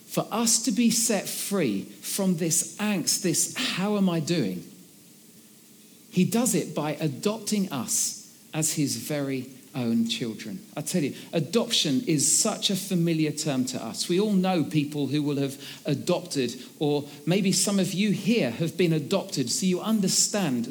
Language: English